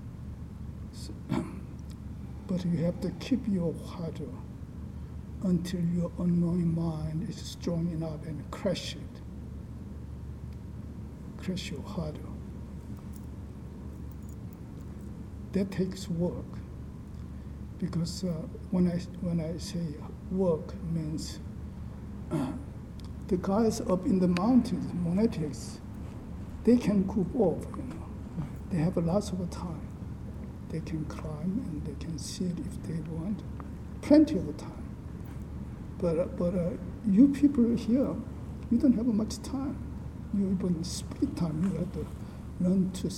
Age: 60-79